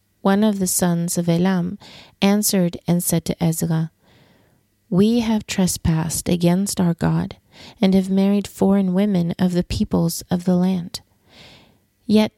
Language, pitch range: English, 170-195 Hz